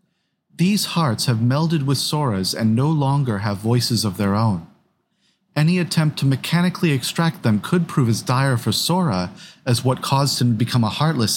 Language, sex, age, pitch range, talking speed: English, male, 30-49, 115-165 Hz, 180 wpm